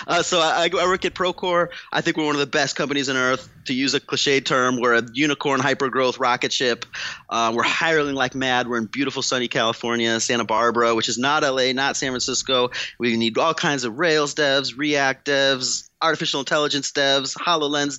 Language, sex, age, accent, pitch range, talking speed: English, male, 30-49, American, 120-150 Hz, 200 wpm